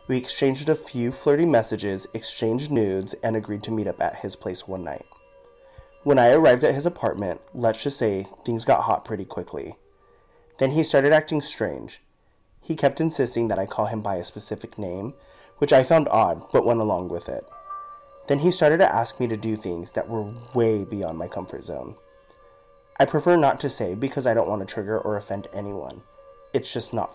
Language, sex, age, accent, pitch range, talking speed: English, male, 30-49, American, 105-145 Hz, 200 wpm